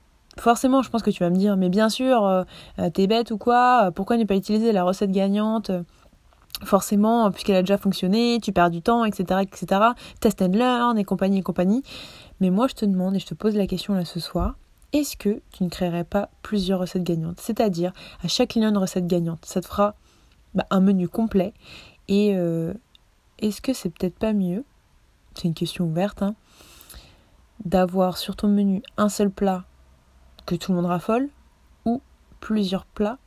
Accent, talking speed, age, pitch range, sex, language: French, 195 wpm, 20-39, 175-210 Hz, female, French